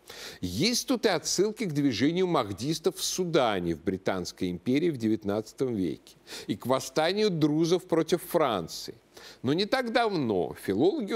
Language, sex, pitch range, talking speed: Russian, male, 120-175 Hz, 140 wpm